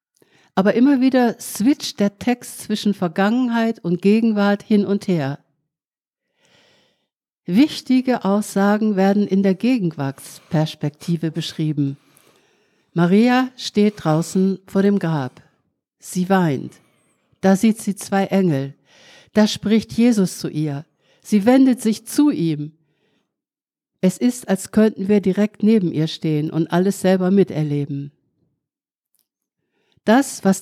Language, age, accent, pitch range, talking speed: German, 60-79, German, 165-230 Hz, 115 wpm